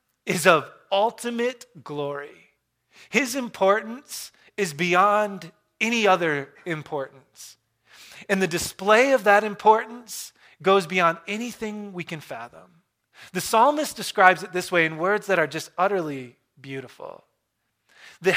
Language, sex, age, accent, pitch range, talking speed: English, male, 20-39, American, 150-195 Hz, 120 wpm